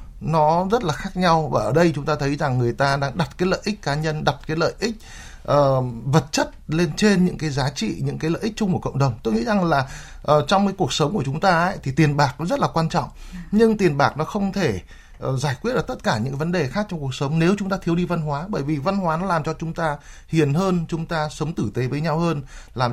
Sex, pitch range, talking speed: male, 140-185 Hz, 275 wpm